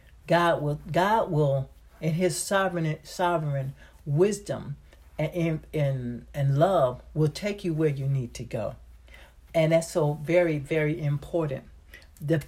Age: 60-79